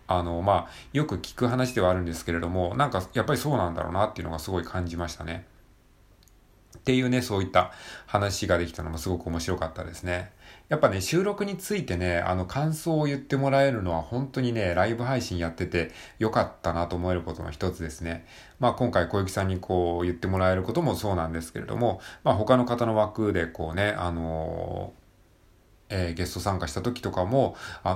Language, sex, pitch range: Japanese, male, 85-120 Hz